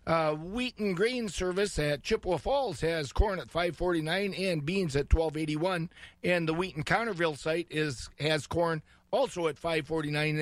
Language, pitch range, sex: English, 155-195 Hz, male